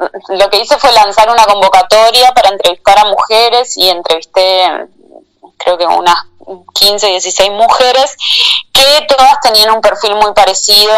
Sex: female